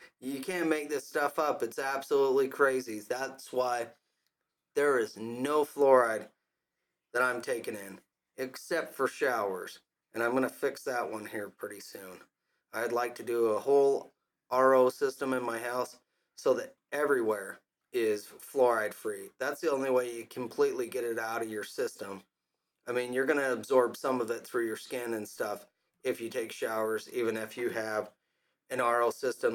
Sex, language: male, English